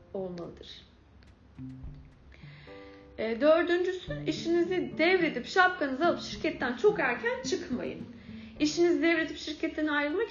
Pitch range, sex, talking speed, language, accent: 225-315 Hz, female, 85 wpm, Turkish, native